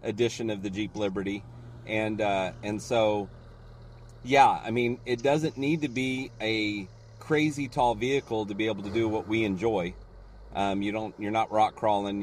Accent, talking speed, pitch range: American, 175 wpm, 100-130 Hz